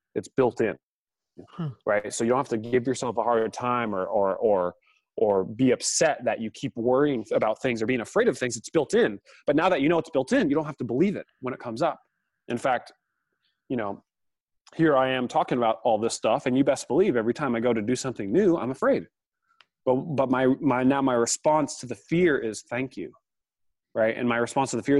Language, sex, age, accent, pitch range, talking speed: English, male, 30-49, American, 115-150 Hz, 235 wpm